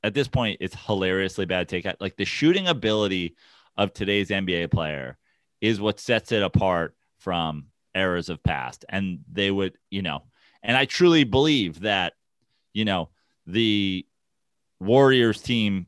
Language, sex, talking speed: English, male, 150 wpm